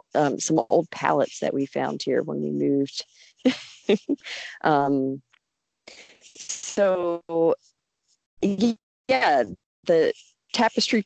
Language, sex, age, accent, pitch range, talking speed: English, female, 40-59, American, 140-175 Hz, 85 wpm